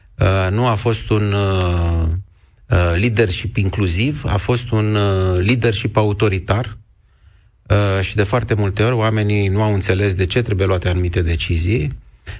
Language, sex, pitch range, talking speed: Romanian, male, 95-110 Hz, 125 wpm